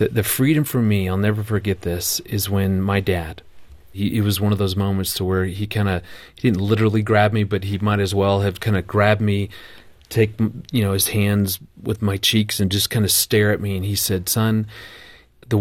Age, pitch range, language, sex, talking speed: 40-59, 105-120 Hz, English, male, 225 wpm